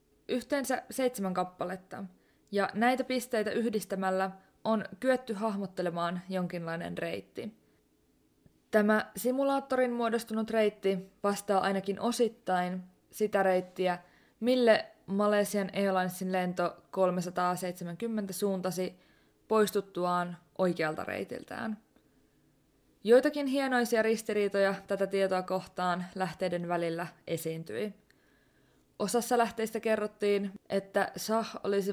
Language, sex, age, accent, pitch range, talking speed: Finnish, female, 20-39, native, 180-220 Hz, 85 wpm